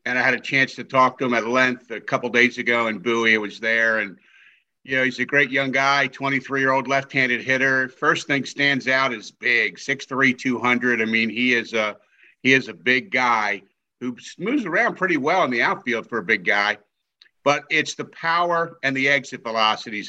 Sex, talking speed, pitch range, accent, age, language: male, 195 wpm, 125-140 Hz, American, 50-69, English